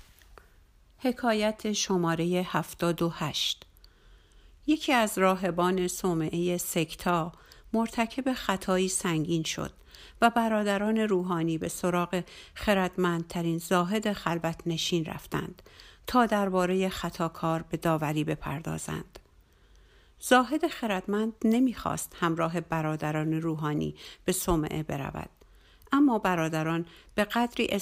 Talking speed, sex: 95 wpm, female